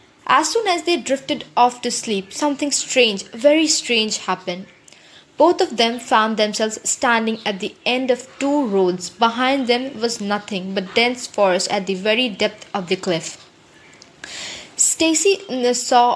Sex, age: female, 20-39